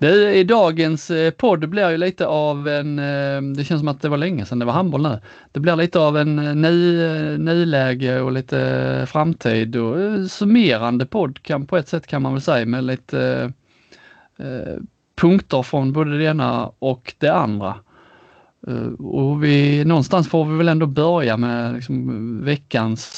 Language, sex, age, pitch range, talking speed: Swedish, male, 30-49, 120-155 Hz, 160 wpm